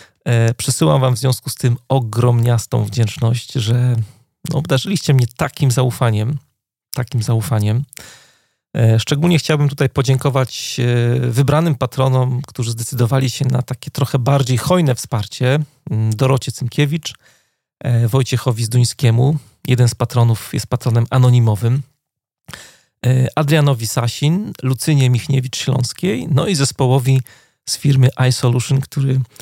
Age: 40-59